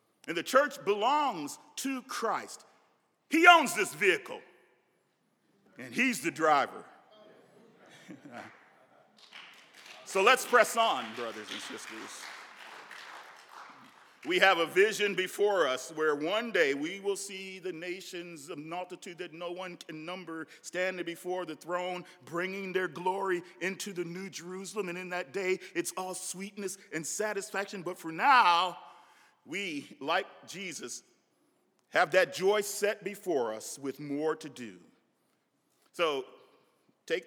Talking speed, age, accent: 130 wpm, 50-69, American